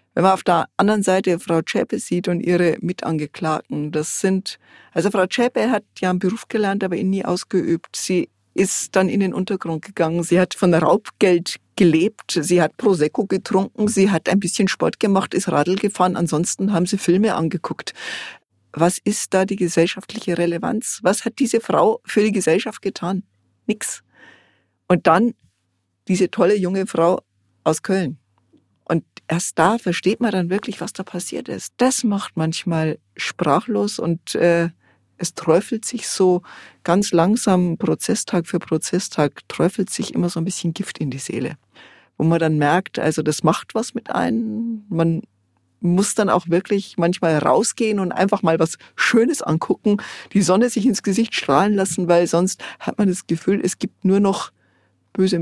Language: German